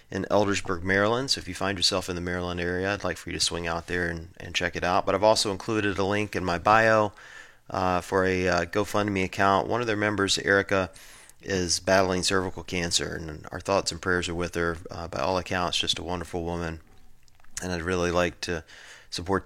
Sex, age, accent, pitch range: male, 30-49, American, 85-100 Hz